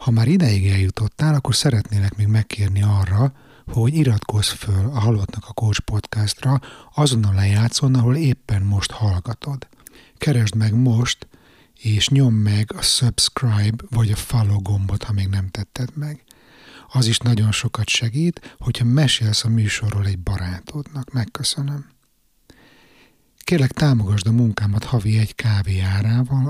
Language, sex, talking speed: Hungarian, male, 135 wpm